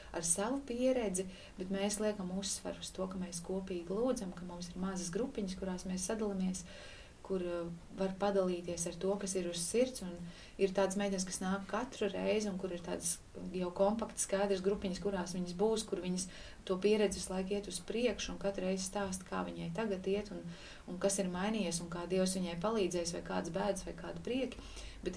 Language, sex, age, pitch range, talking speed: English, female, 30-49, 175-200 Hz, 200 wpm